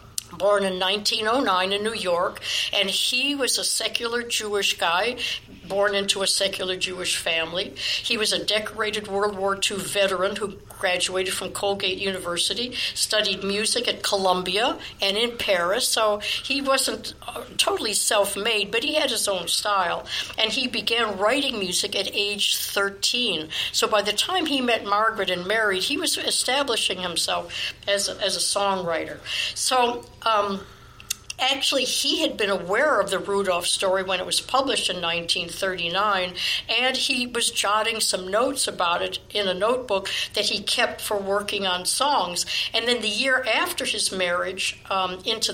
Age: 60-79